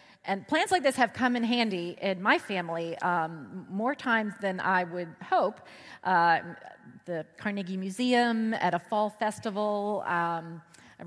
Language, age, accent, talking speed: English, 30-49, American, 150 wpm